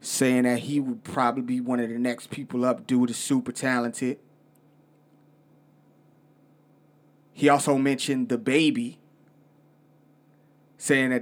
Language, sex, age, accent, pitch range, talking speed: English, male, 30-49, American, 130-150 Hz, 125 wpm